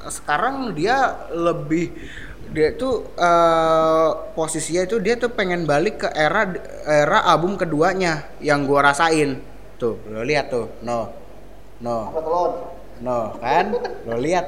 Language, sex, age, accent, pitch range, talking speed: Indonesian, male, 20-39, native, 140-170 Hz, 125 wpm